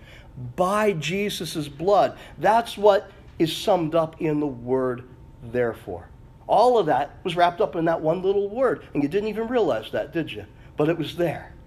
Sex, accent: male, American